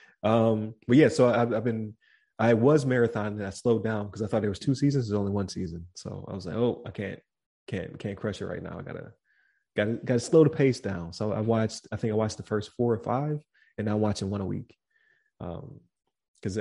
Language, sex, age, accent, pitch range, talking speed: English, male, 20-39, American, 100-115 Hz, 230 wpm